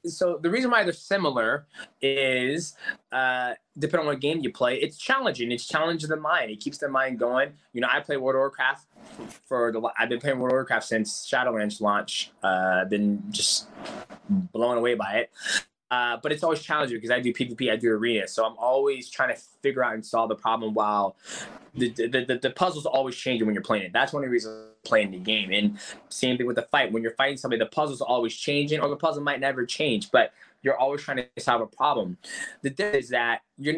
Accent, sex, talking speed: American, male, 230 wpm